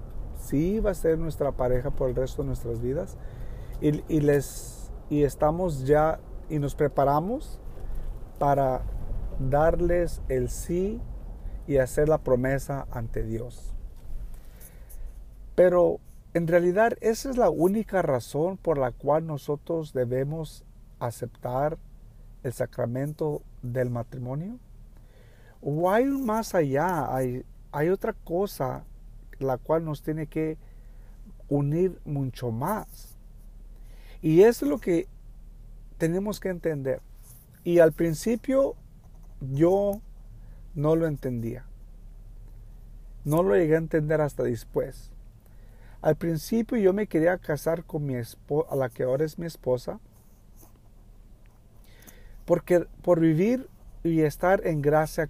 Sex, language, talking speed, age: male, Spanish, 120 wpm, 50-69